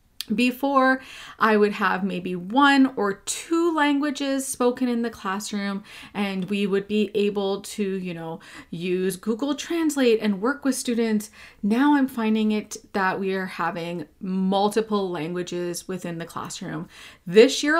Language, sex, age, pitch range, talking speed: English, female, 30-49, 185-225 Hz, 145 wpm